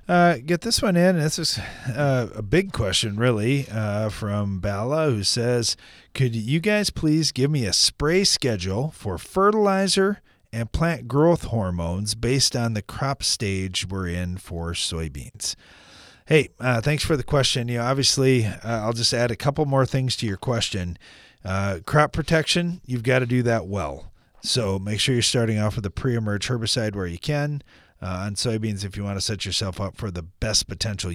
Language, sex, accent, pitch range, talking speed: English, male, American, 95-130 Hz, 190 wpm